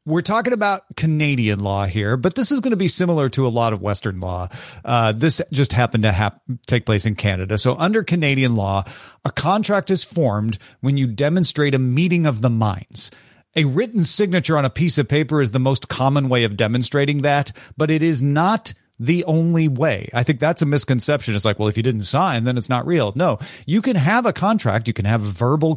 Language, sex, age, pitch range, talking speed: English, male, 40-59, 115-160 Hz, 220 wpm